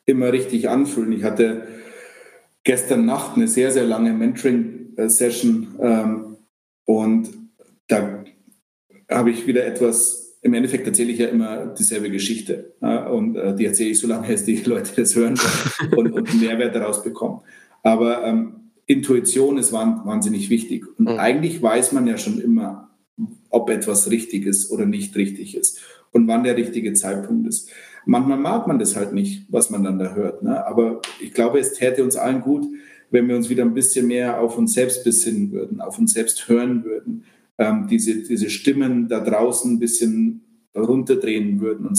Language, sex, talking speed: German, male, 170 wpm